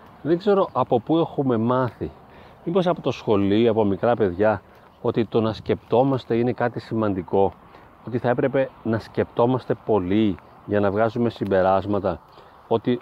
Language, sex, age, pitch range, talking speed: Greek, male, 40-59, 105-175 Hz, 145 wpm